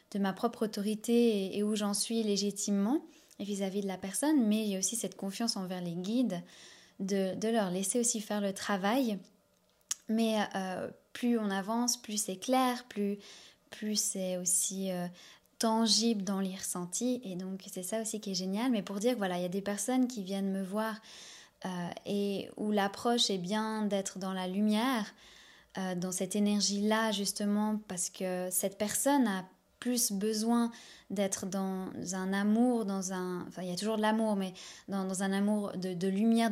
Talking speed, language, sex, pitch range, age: 185 wpm, French, female, 190-220 Hz, 10-29